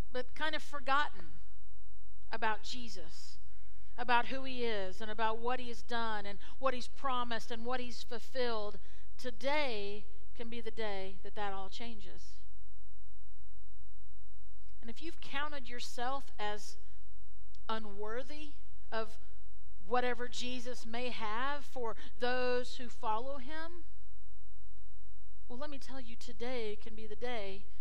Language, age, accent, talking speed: English, 50-69, American, 130 wpm